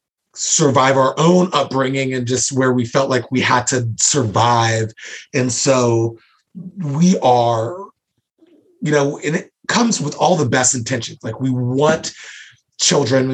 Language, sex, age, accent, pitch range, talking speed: English, male, 30-49, American, 115-135 Hz, 145 wpm